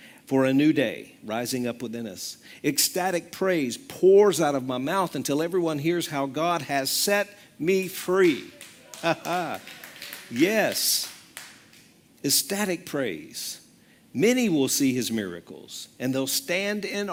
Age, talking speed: 50-69, 125 wpm